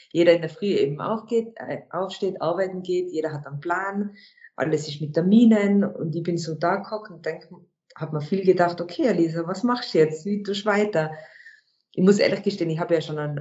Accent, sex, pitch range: German, female, 160-200 Hz